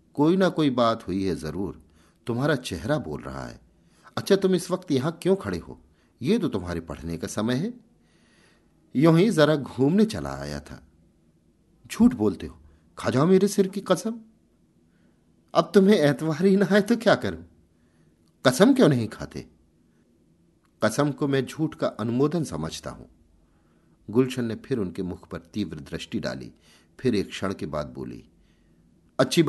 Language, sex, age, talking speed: Hindi, male, 50-69, 155 wpm